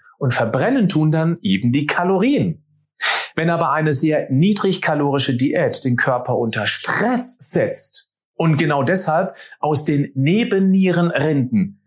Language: German